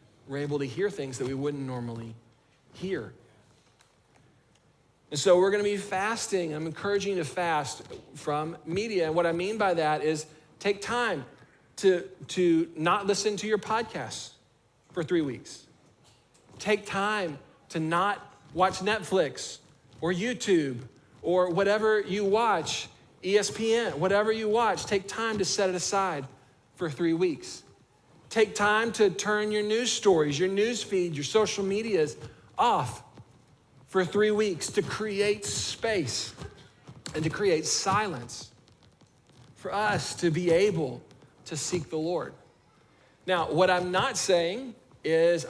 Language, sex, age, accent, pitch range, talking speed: English, male, 40-59, American, 155-205 Hz, 140 wpm